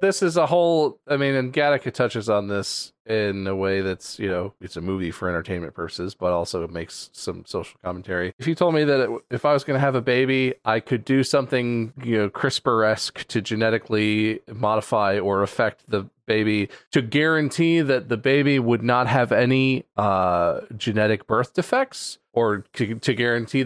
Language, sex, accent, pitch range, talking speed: English, male, American, 110-140 Hz, 185 wpm